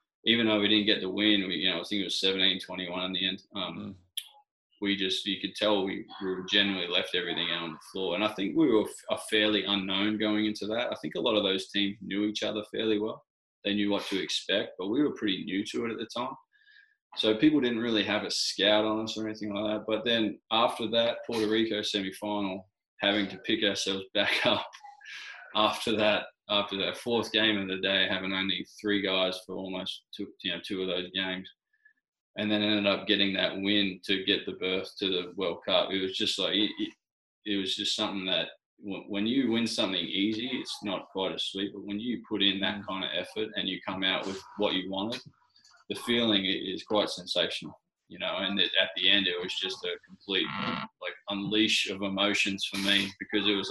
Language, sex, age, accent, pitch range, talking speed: English, male, 20-39, Australian, 95-110 Hz, 215 wpm